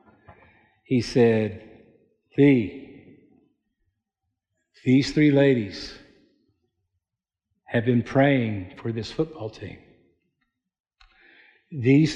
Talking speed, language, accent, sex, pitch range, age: 70 wpm, English, American, male, 125-160 Hz, 50-69